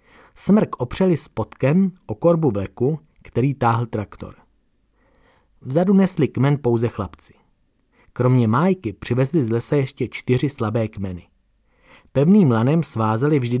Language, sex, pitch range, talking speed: Czech, male, 110-150 Hz, 120 wpm